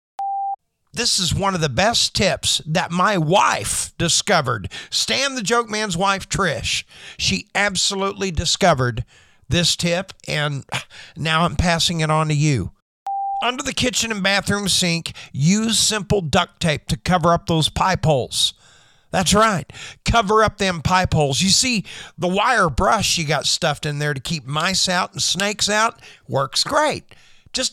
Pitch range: 155-215 Hz